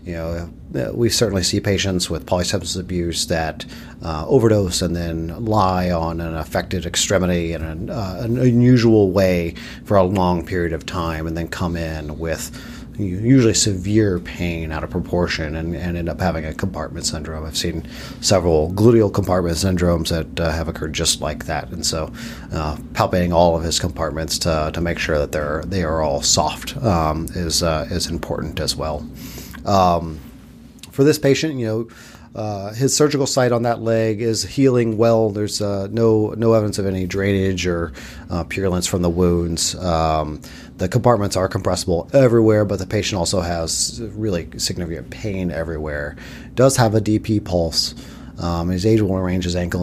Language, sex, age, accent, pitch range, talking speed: English, male, 40-59, American, 80-105 Hz, 175 wpm